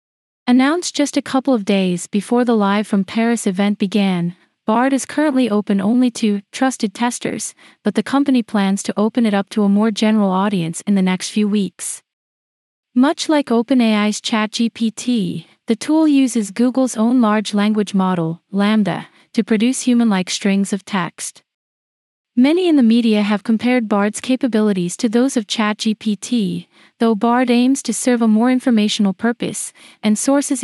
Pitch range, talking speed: 200-245 Hz, 160 wpm